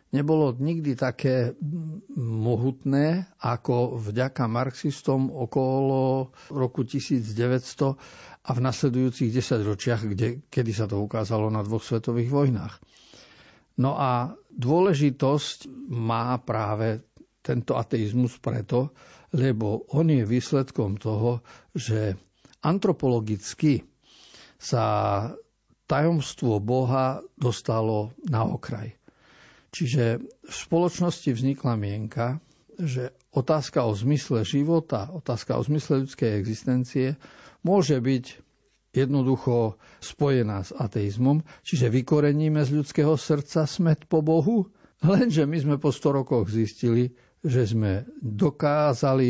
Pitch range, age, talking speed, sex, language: 115-145 Hz, 50-69, 100 wpm, male, Slovak